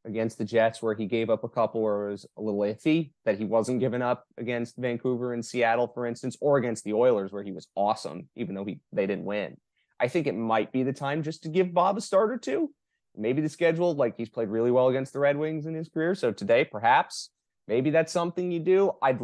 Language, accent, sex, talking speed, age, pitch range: English, American, male, 245 wpm, 30-49, 115-160 Hz